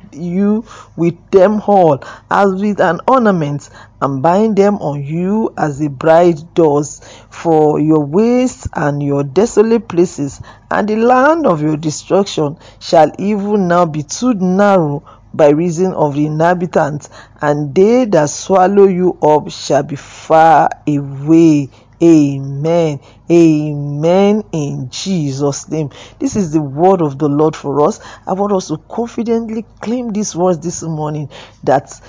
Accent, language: Nigerian, English